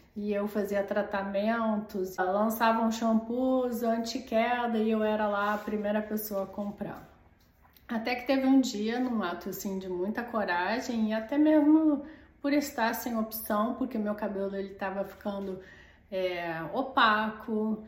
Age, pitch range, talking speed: 40-59, 195-240 Hz, 145 wpm